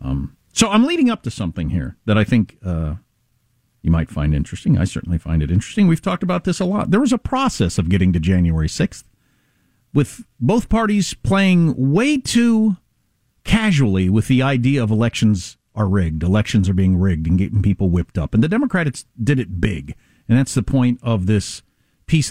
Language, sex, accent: English, male, American